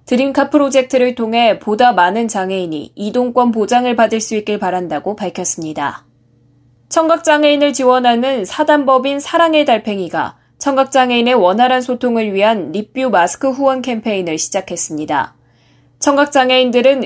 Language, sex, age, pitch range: Korean, female, 20-39, 195-265 Hz